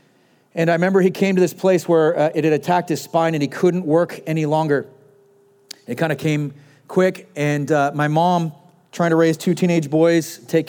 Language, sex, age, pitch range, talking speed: English, male, 40-59, 145-180 Hz, 210 wpm